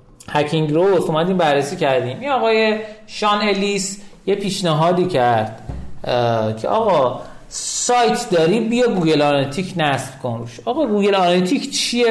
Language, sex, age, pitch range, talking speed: Persian, male, 40-59, 145-205 Hz, 125 wpm